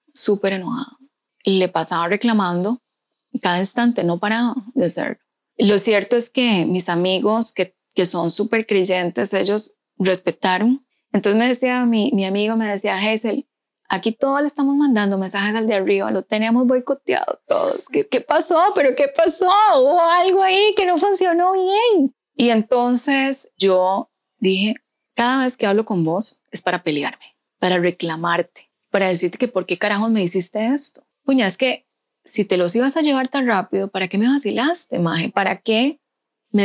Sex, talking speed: female, 170 wpm